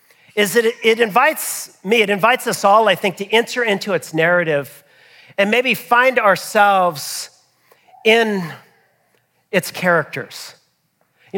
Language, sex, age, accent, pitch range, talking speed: English, male, 40-59, American, 160-220 Hz, 125 wpm